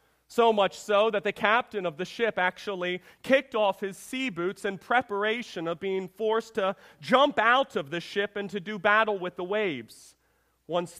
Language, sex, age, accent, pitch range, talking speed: English, male, 40-59, American, 170-215 Hz, 185 wpm